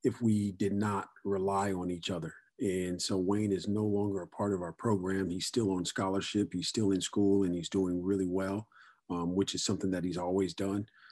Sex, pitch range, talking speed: male, 90-100 Hz, 215 wpm